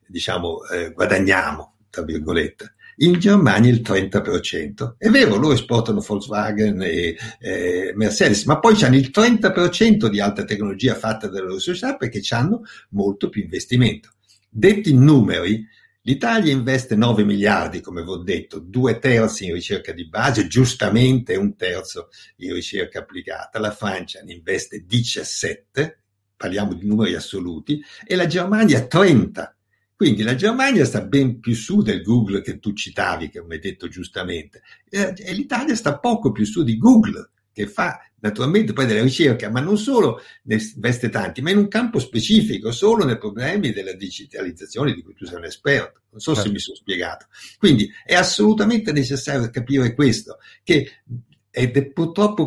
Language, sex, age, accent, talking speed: Italian, male, 60-79, native, 155 wpm